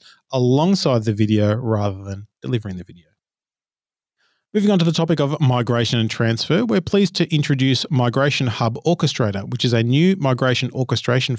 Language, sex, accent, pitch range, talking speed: English, male, Australian, 115-140 Hz, 160 wpm